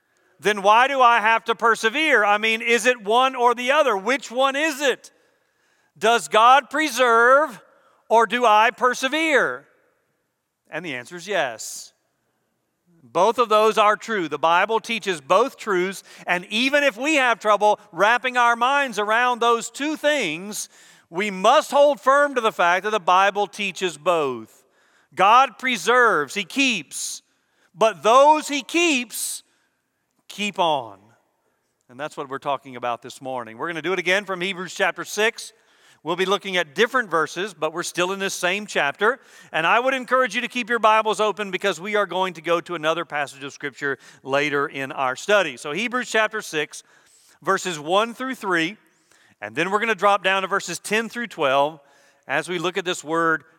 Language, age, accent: English, 40-59, American